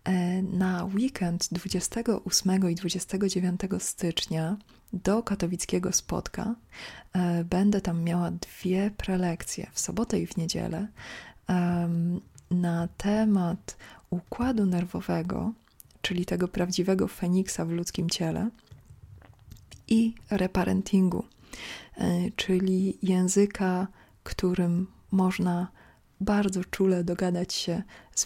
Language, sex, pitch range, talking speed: Polish, female, 175-195 Hz, 85 wpm